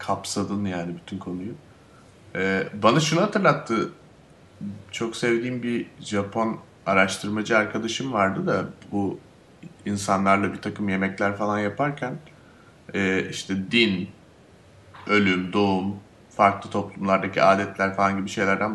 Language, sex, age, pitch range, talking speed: Turkish, male, 30-49, 95-120 Hz, 110 wpm